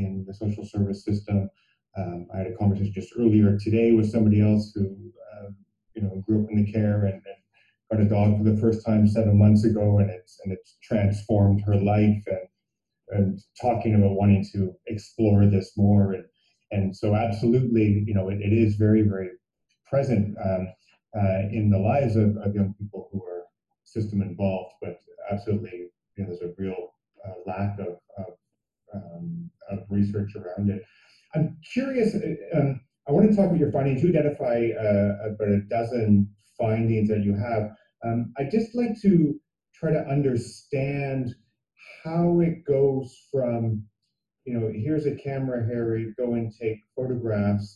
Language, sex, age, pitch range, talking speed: English, male, 30-49, 100-115 Hz, 170 wpm